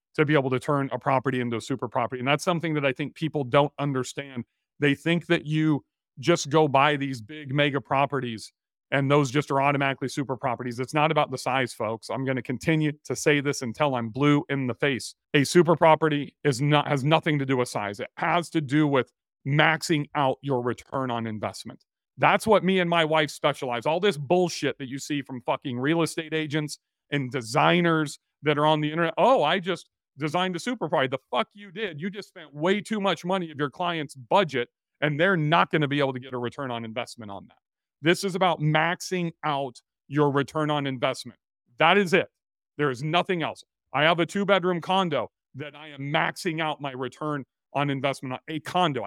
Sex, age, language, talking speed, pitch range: male, 40-59, English, 210 wpm, 135-165 Hz